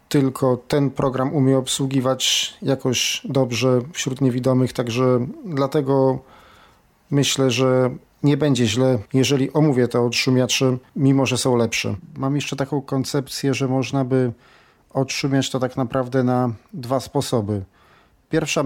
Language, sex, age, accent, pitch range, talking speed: Polish, male, 40-59, native, 125-135 Hz, 125 wpm